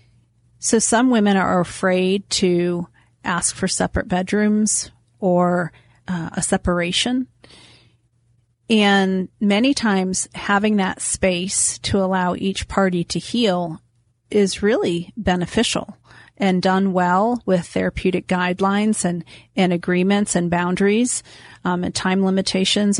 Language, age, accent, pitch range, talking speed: English, 40-59, American, 175-200 Hz, 115 wpm